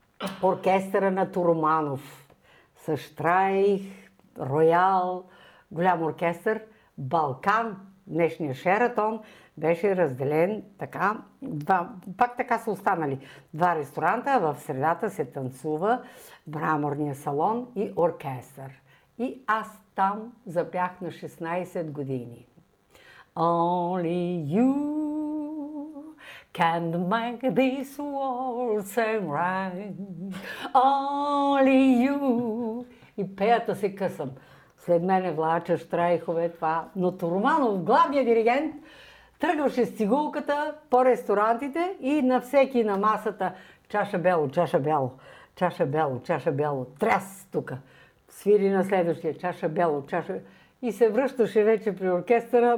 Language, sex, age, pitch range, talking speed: Bulgarian, female, 60-79, 165-235 Hz, 100 wpm